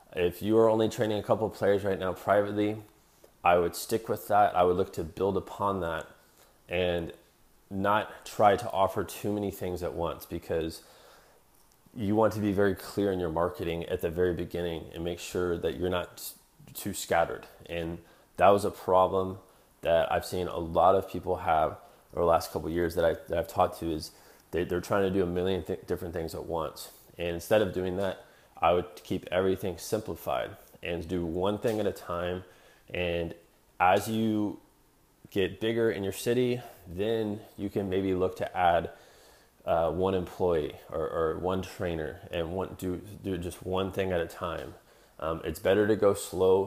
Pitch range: 85-100 Hz